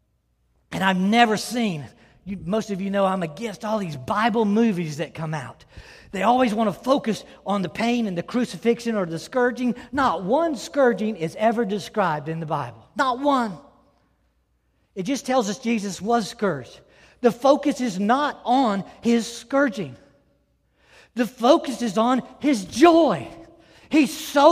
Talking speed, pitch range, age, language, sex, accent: 155 wpm, 165-255 Hz, 40-59, English, male, American